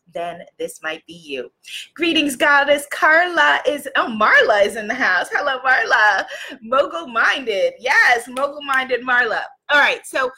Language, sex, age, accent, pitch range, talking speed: English, female, 30-49, American, 195-295 Hz, 140 wpm